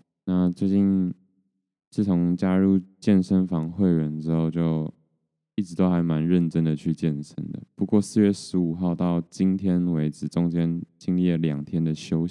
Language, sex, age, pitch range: Chinese, male, 20-39, 80-95 Hz